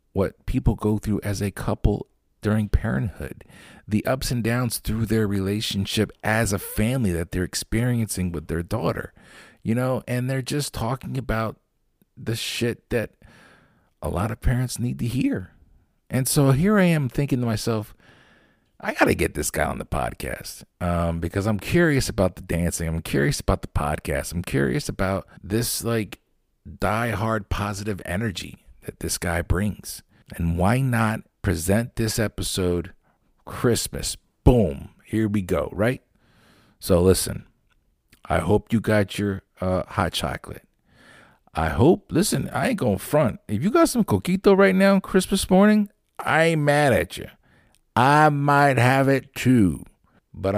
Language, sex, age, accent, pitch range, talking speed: English, male, 50-69, American, 95-125 Hz, 160 wpm